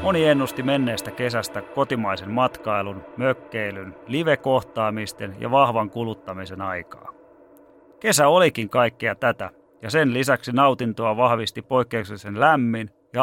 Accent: native